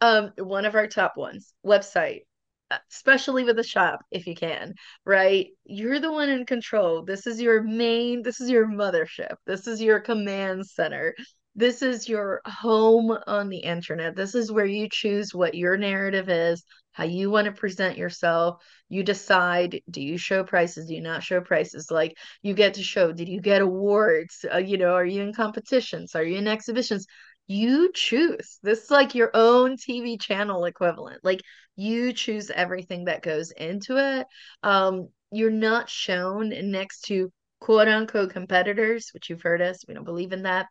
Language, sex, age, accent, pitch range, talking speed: English, female, 30-49, American, 185-230 Hz, 180 wpm